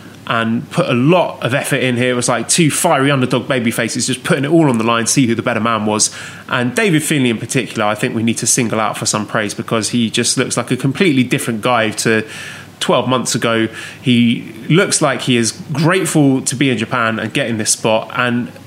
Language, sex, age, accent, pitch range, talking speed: English, male, 20-39, British, 115-145 Hz, 235 wpm